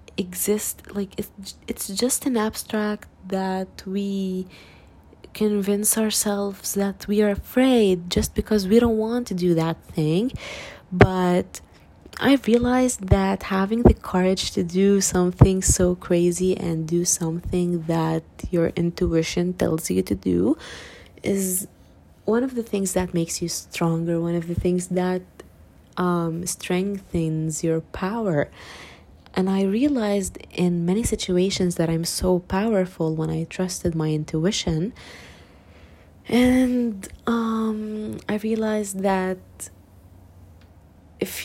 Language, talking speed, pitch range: English, 125 wpm, 160-200 Hz